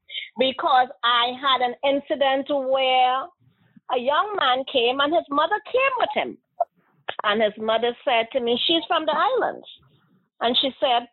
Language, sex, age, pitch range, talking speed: English, female, 40-59, 240-315 Hz, 155 wpm